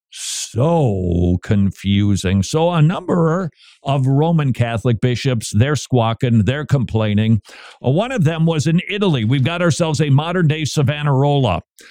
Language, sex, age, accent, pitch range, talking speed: English, male, 50-69, American, 115-165 Hz, 125 wpm